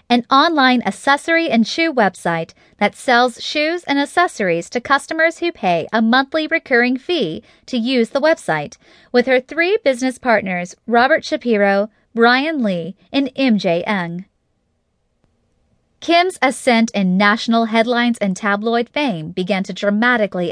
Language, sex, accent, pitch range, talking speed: English, female, American, 205-280 Hz, 135 wpm